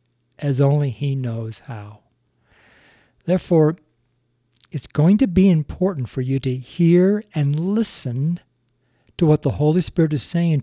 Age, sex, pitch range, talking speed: 50-69, male, 120-150 Hz, 135 wpm